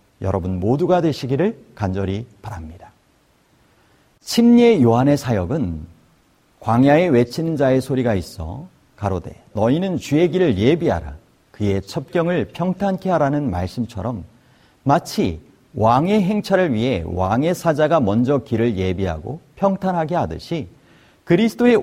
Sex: male